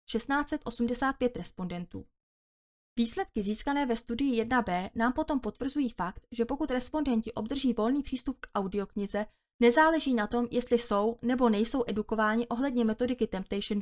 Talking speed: 130 wpm